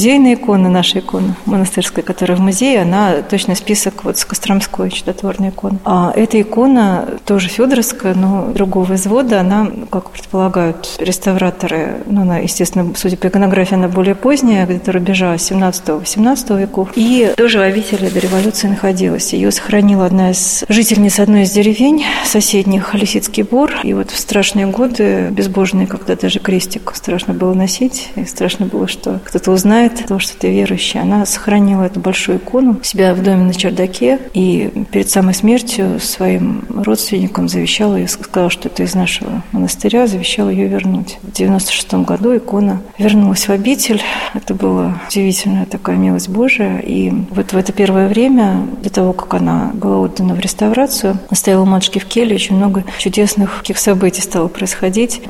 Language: Russian